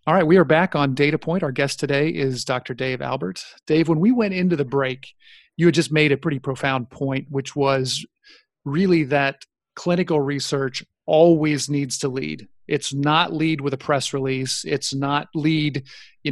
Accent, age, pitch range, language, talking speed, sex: American, 40-59, 135-155 Hz, English, 185 wpm, male